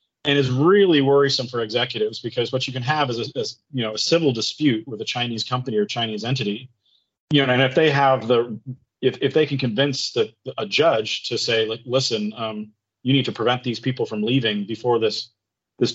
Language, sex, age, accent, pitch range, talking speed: English, male, 30-49, American, 110-135 Hz, 210 wpm